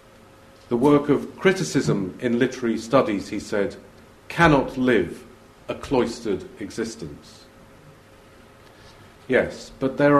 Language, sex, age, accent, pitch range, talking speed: English, male, 50-69, British, 115-145 Hz, 100 wpm